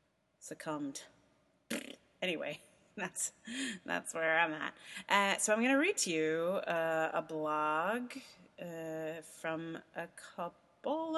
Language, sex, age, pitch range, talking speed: English, female, 30-49, 160-245 Hz, 115 wpm